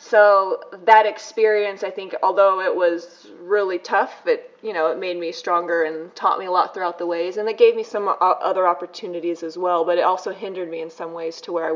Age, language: 20-39, English